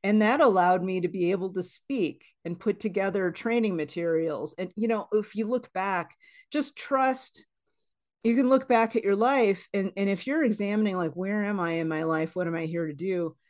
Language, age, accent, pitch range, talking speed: English, 40-59, American, 165-210 Hz, 215 wpm